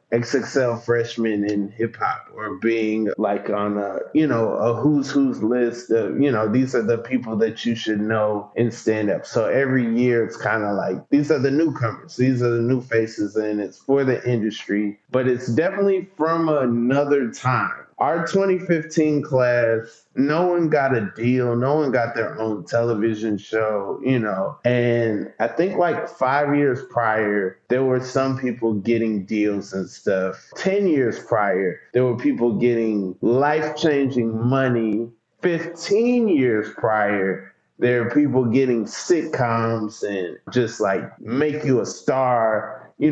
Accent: American